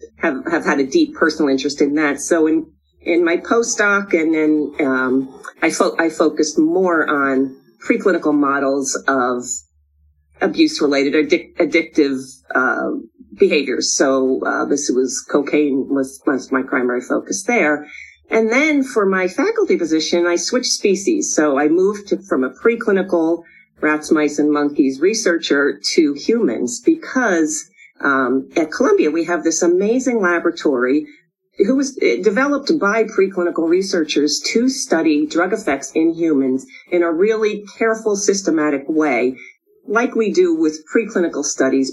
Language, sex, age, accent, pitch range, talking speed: English, female, 40-59, American, 140-225 Hz, 145 wpm